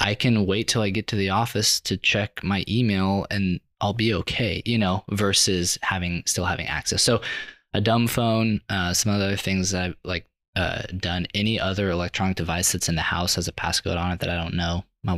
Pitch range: 85-105 Hz